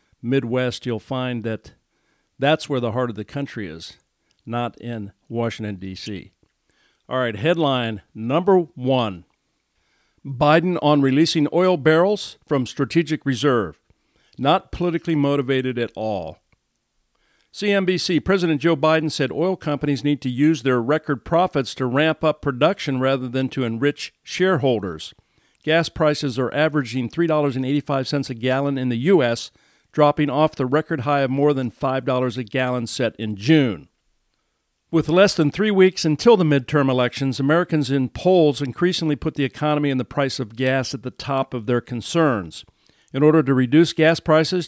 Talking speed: 150 wpm